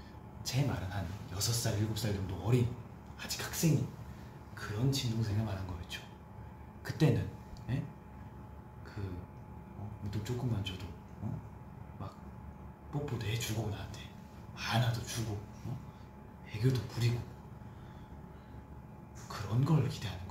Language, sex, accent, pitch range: Korean, male, native, 105-125 Hz